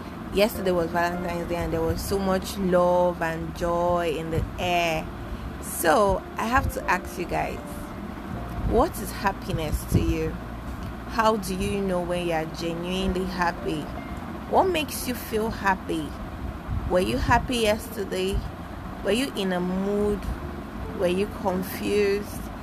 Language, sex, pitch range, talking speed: English, female, 170-220 Hz, 140 wpm